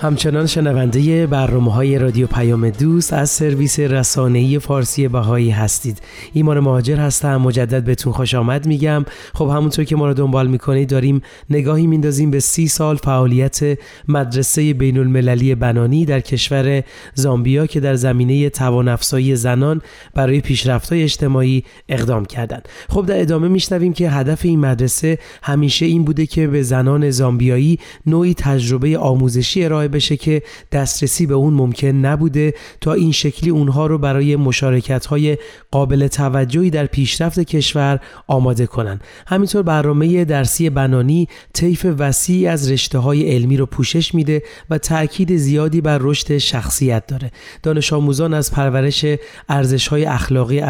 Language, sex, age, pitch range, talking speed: Persian, male, 30-49, 130-155 Hz, 135 wpm